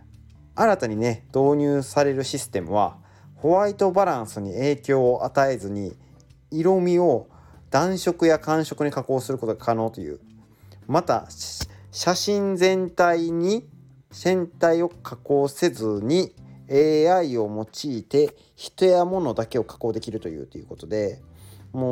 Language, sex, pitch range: Japanese, male, 105-155 Hz